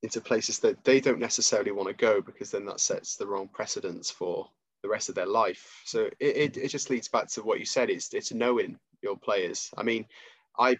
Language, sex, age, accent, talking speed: English, male, 20-39, British, 230 wpm